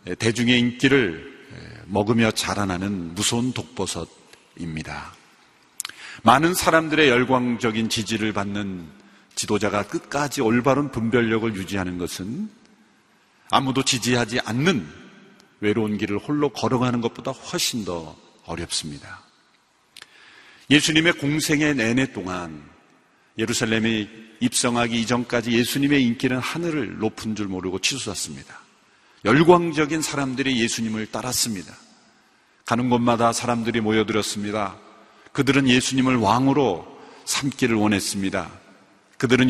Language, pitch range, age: Korean, 105-135 Hz, 40-59